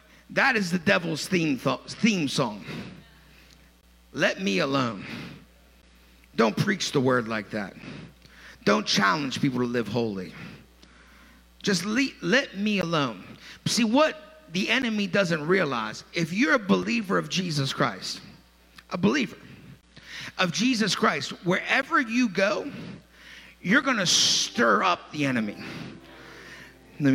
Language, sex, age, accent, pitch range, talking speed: English, male, 50-69, American, 165-255 Hz, 125 wpm